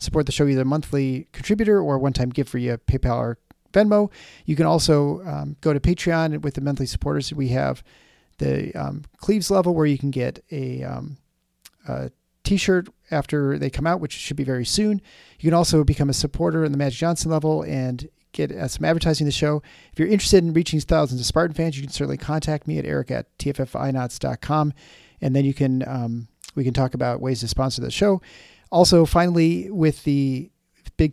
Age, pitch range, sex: 40-59, 130-165 Hz, male